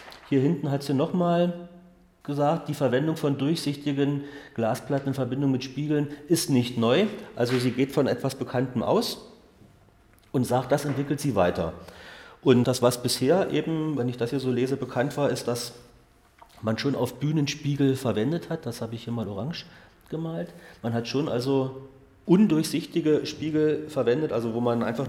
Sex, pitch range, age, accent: male, 115-145 Hz, 40-59, German